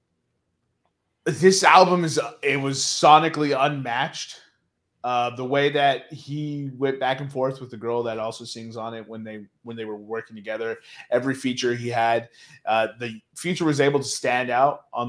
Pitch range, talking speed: 115-135 Hz, 175 wpm